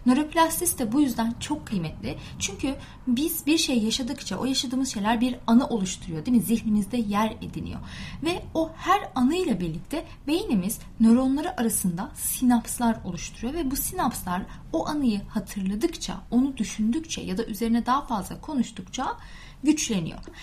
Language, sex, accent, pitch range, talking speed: Turkish, female, native, 205-290 Hz, 140 wpm